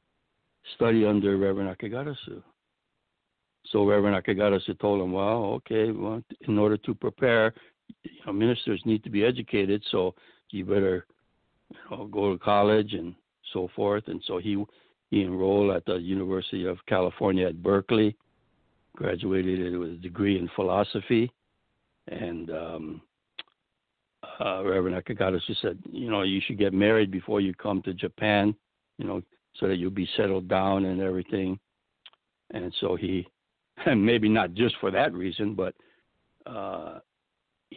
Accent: American